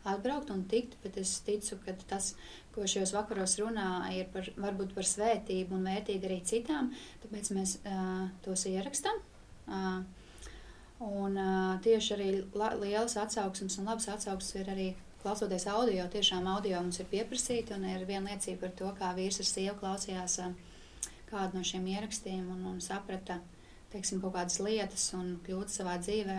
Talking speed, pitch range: 160 wpm, 185-210 Hz